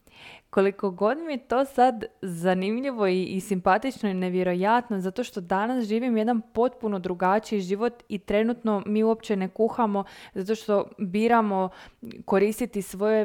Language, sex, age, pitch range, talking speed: Croatian, female, 20-39, 190-230 Hz, 135 wpm